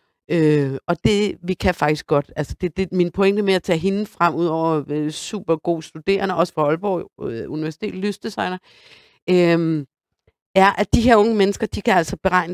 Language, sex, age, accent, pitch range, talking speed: Danish, female, 50-69, native, 170-210 Hz, 190 wpm